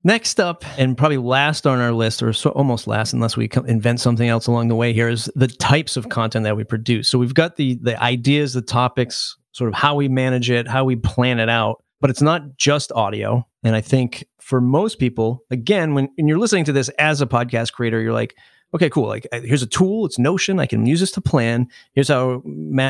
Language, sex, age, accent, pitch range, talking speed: English, male, 30-49, American, 120-145 Hz, 230 wpm